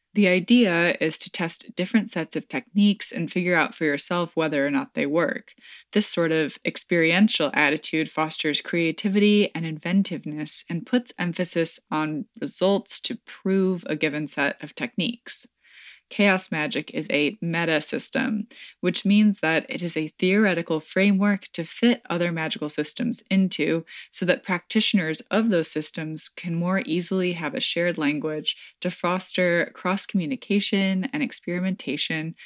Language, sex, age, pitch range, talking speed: English, female, 20-39, 160-205 Hz, 140 wpm